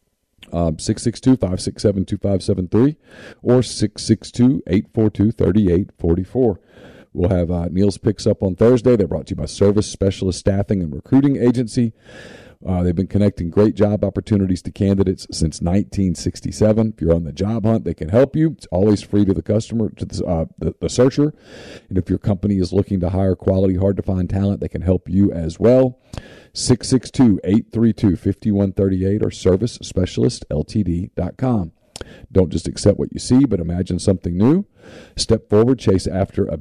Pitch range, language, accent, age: 90-110 Hz, English, American, 40-59